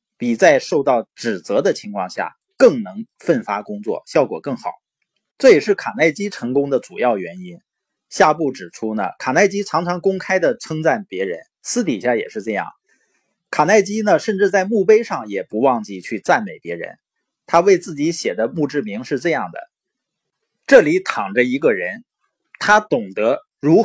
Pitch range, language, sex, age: 155-225 Hz, Chinese, male, 20-39